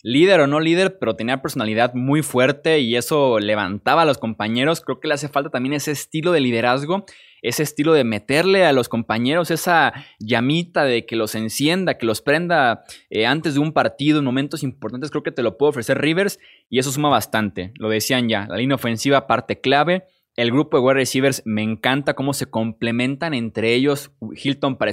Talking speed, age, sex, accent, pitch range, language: 195 wpm, 20-39, male, Mexican, 115-150 Hz, Spanish